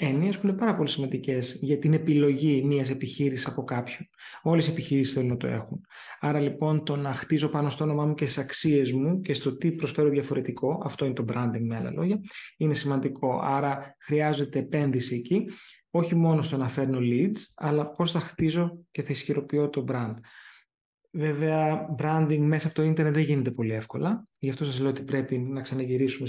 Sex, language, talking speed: male, Greek, 190 wpm